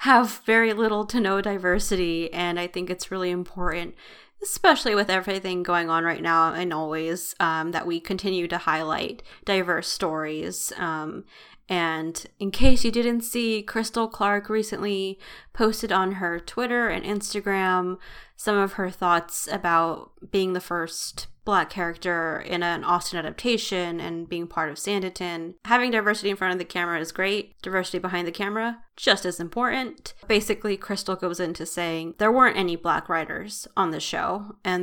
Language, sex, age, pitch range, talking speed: English, female, 20-39, 175-210 Hz, 160 wpm